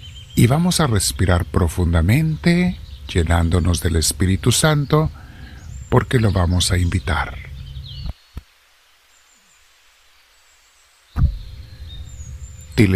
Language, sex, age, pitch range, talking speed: Spanish, male, 50-69, 80-105 Hz, 70 wpm